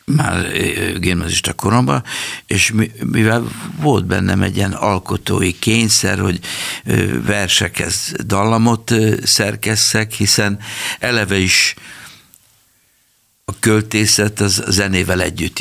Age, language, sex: 60-79, Hungarian, male